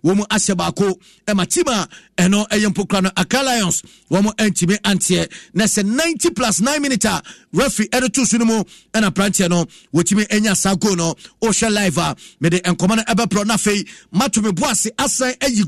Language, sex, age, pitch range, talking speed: English, male, 50-69, 165-235 Hz, 150 wpm